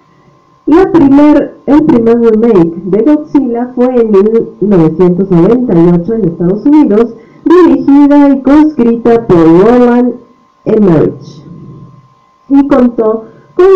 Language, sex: Spanish, female